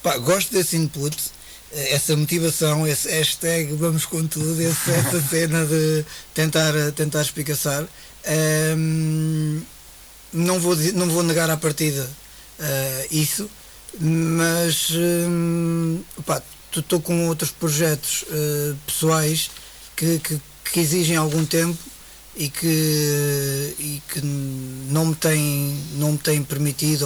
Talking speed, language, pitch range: 115 wpm, Portuguese, 145-165 Hz